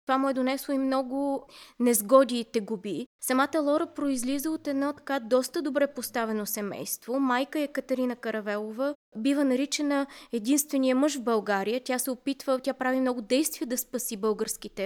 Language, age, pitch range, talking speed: Bulgarian, 20-39, 245-285 Hz, 160 wpm